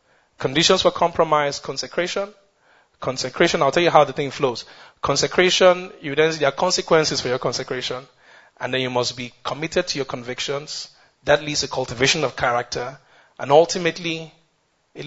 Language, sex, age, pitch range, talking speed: English, male, 30-49, 140-185 Hz, 155 wpm